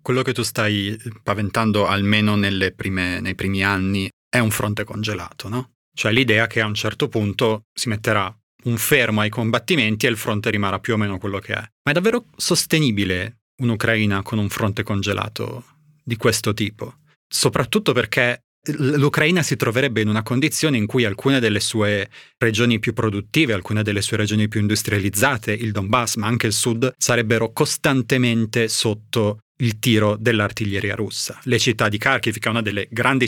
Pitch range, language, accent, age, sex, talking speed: 105-125 Hz, Italian, native, 30-49, male, 170 wpm